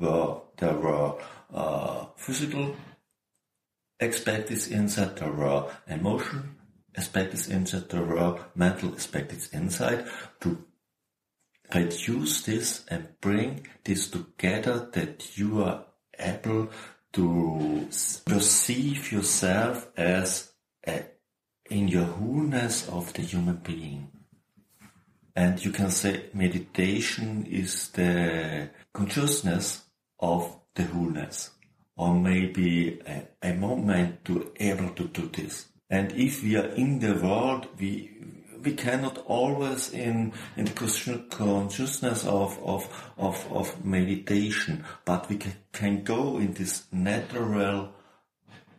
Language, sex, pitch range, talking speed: German, male, 90-110 Hz, 105 wpm